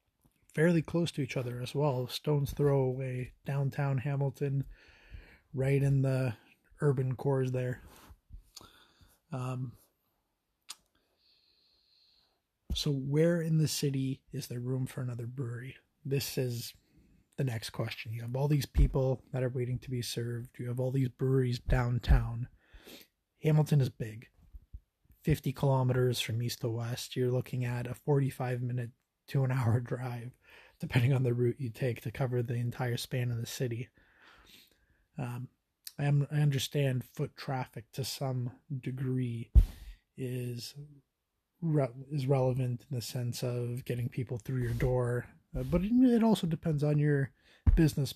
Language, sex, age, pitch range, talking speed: English, male, 20-39, 120-140 Hz, 140 wpm